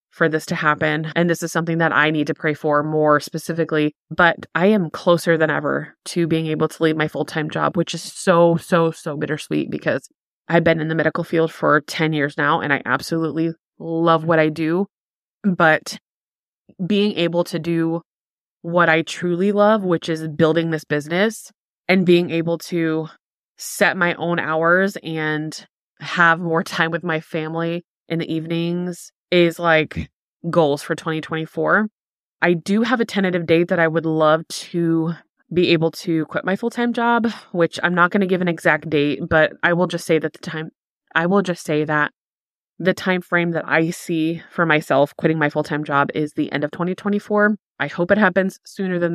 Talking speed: 185 wpm